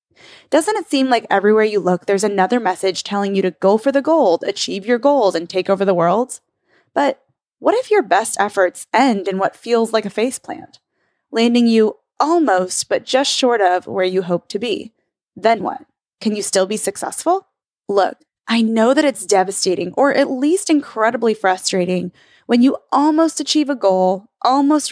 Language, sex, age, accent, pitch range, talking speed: English, female, 20-39, American, 190-265 Hz, 180 wpm